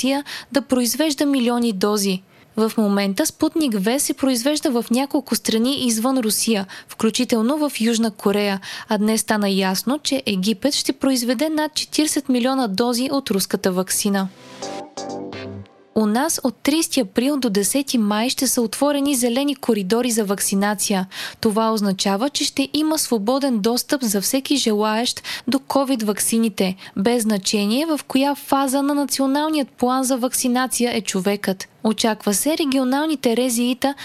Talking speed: 135 wpm